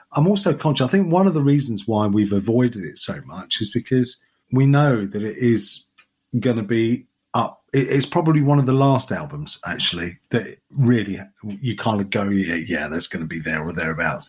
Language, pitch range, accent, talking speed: English, 110-150 Hz, British, 200 wpm